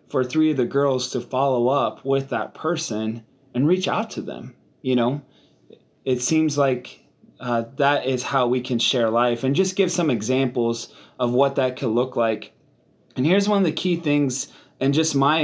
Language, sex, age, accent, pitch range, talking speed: English, male, 30-49, American, 120-145 Hz, 195 wpm